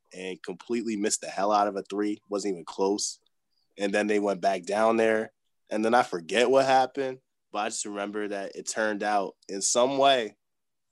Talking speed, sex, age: 200 wpm, male, 20-39